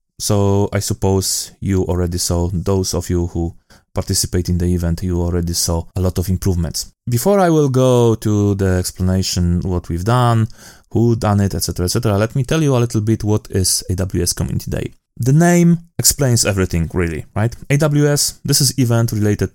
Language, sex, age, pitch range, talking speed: English, male, 20-39, 95-120 Hz, 180 wpm